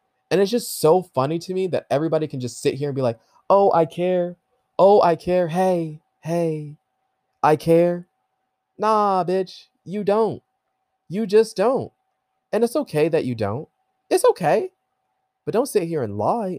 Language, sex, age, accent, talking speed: English, male, 20-39, American, 170 wpm